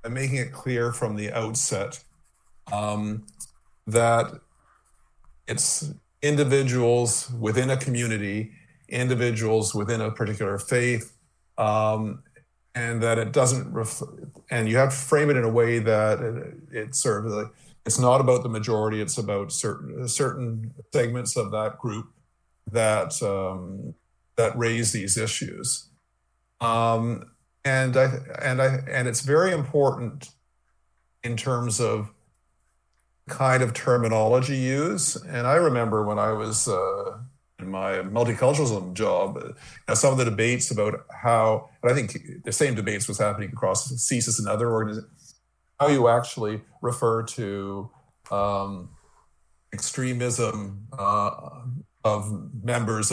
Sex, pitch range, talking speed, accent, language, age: male, 110-130 Hz, 135 wpm, American, English, 50-69